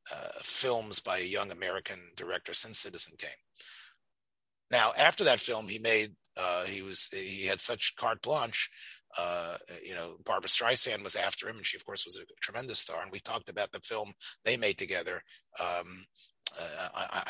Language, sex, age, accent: English, male, 40-59, American